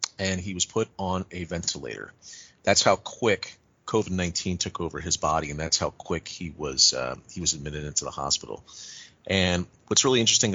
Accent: American